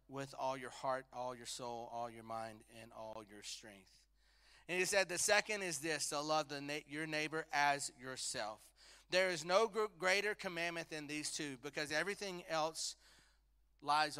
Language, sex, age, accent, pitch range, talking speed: English, male, 30-49, American, 120-170 Hz, 180 wpm